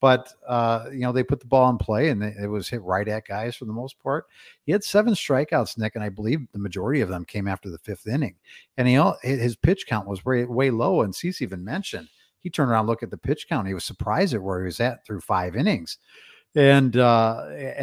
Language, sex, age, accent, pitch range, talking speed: English, male, 50-69, American, 105-135 Hz, 250 wpm